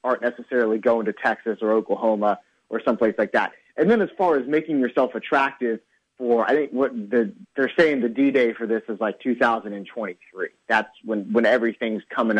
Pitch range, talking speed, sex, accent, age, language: 115-140 Hz, 180 wpm, male, American, 30-49, English